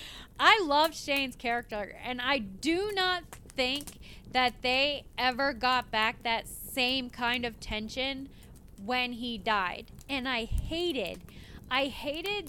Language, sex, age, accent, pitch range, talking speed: English, female, 20-39, American, 245-325 Hz, 130 wpm